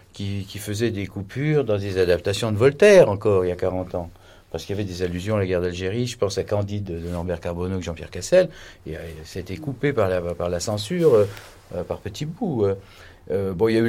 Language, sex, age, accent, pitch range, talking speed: French, male, 50-69, French, 95-150 Hz, 245 wpm